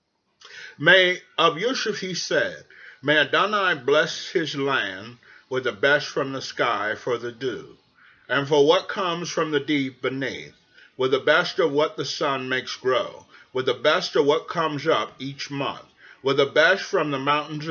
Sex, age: male, 30-49